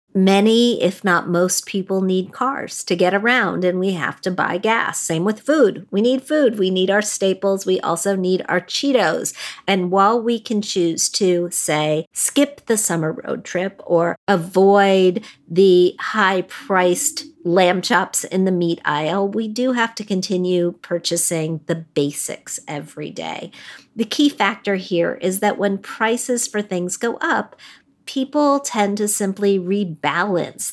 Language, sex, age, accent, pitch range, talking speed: English, female, 50-69, American, 175-210 Hz, 155 wpm